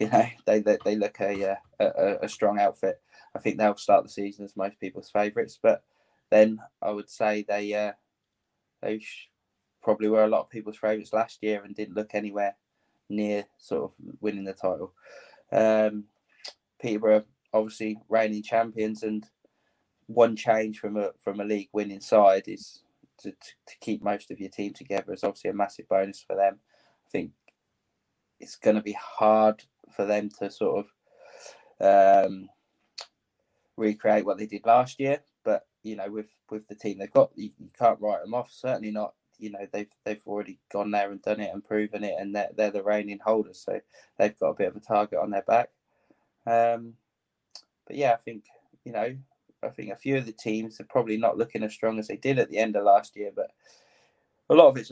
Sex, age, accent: male, 20-39, British